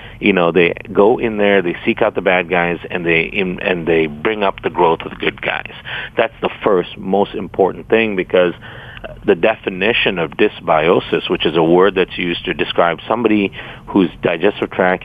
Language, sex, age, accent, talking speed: English, male, 50-69, American, 185 wpm